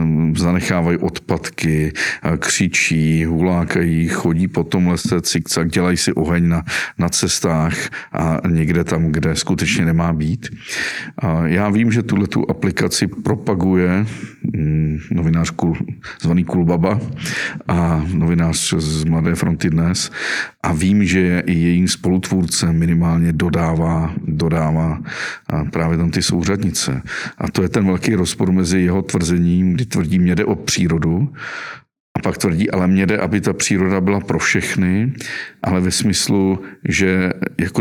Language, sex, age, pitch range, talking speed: Czech, male, 50-69, 80-90 Hz, 130 wpm